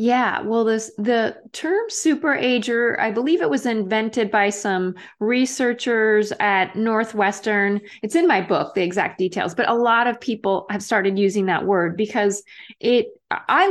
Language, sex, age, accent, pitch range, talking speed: English, female, 30-49, American, 200-245 Hz, 160 wpm